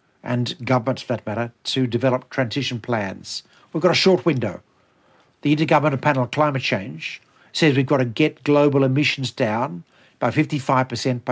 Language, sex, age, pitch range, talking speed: English, male, 60-79, 125-155 Hz, 170 wpm